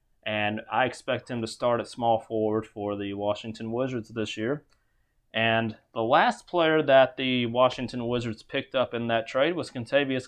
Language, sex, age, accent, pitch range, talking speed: English, male, 30-49, American, 115-150 Hz, 175 wpm